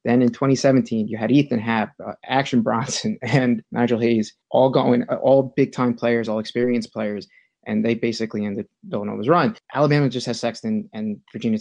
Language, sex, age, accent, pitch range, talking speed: English, male, 20-39, American, 115-135 Hz, 170 wpm